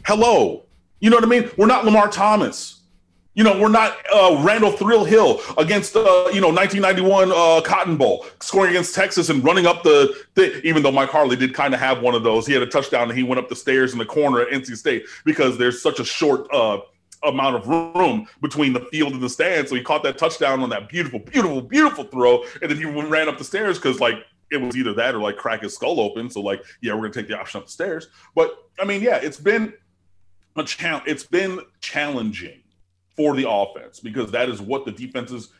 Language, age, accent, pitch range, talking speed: English, 30-49, American, 120-185 Hz, 230 wpm